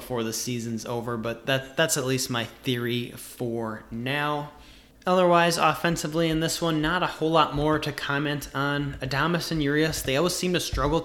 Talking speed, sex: 185 wpm, male